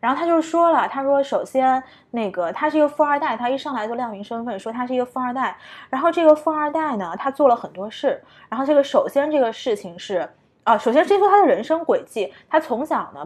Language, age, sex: Chinese, 20-39, female